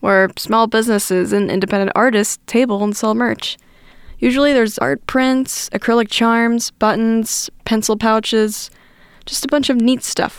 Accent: American